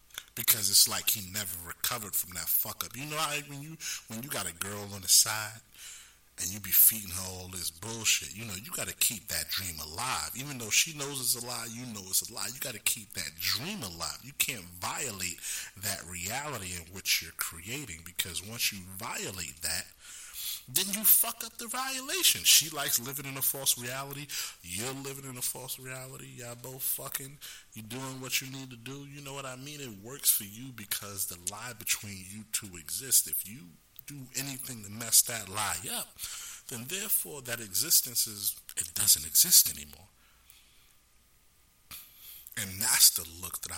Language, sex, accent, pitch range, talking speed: English, male, American, 95-130 Hz, 190 wpm